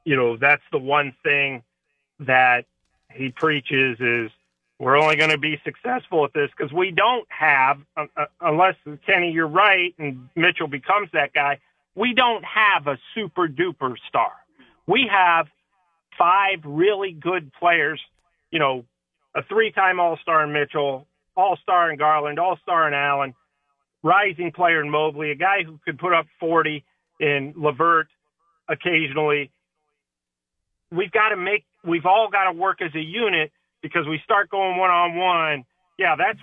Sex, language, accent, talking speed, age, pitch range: male, English, American, 150 wpm, 40-59, 145-180 Hz